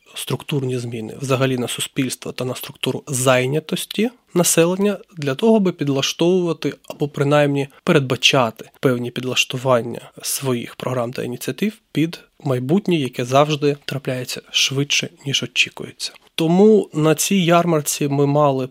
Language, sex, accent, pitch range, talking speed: Ukrainian, male, native, 130-160 Hz, 120 wpm